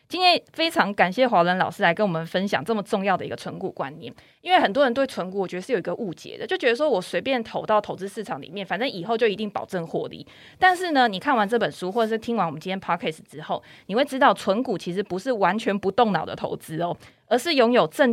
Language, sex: Chinese, female